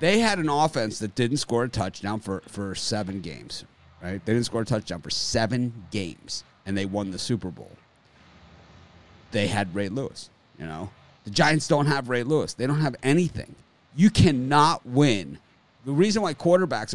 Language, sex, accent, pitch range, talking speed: English, male, American, 110-160 Hz, 180 wpm